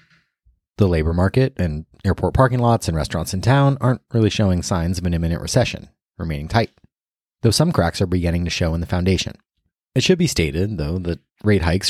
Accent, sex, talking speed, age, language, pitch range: American, male, 195 wpm, 30-49, English, 85-105 Hz